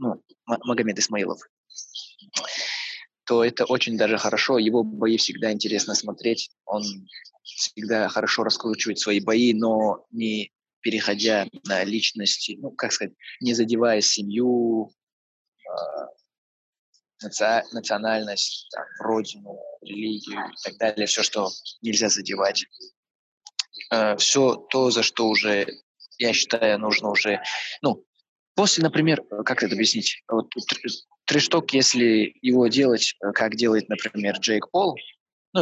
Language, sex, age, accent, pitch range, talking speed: Russian, male, 20-39, native, 105-120 Hz, 120 wpm